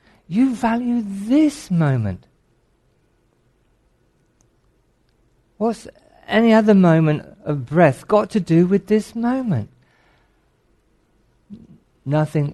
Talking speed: 80 wpm